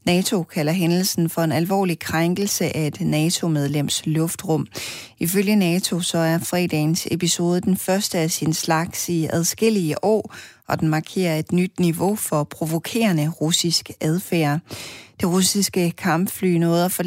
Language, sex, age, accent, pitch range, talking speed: Danish, female, 30-49, native, 155-180 Hz, 135 wpm